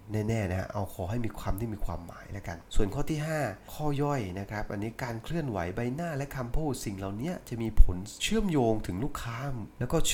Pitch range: 95-125 Hz